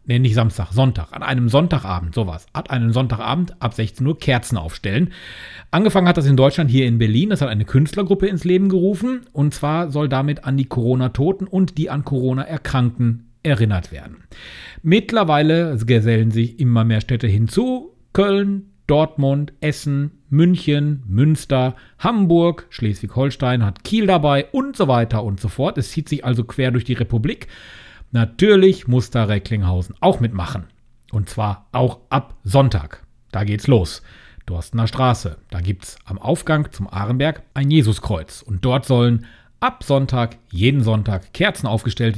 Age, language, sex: 40-59, German, male